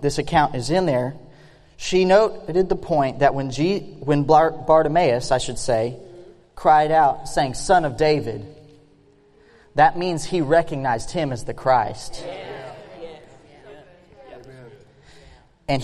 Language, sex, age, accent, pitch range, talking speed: English, male, 30-49, American, 125-170 Hz, 115 wpm